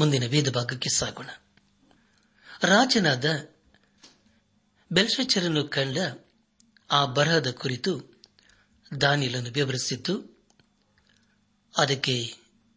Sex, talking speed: male, 55 wpm